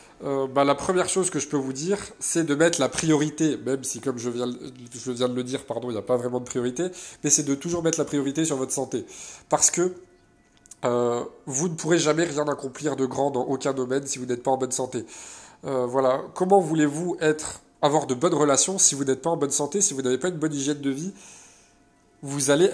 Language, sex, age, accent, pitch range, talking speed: French, male, 20-39, French, 130-155 Hz, 230 wpm